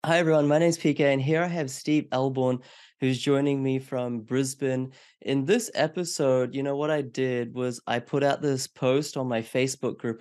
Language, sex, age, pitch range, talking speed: English, male, 30-49, 125-145 Hz, 205 wpm